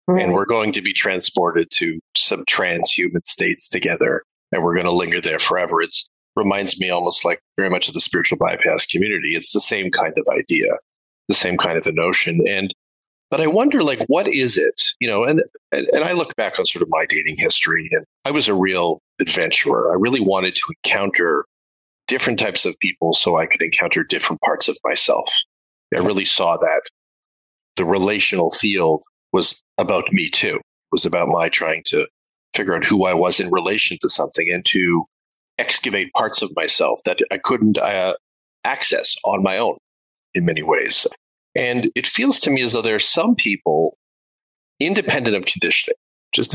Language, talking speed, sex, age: English, 185 wpm, male, 40-59